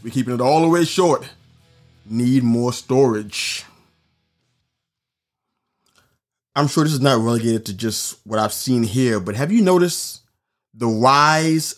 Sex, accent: male, American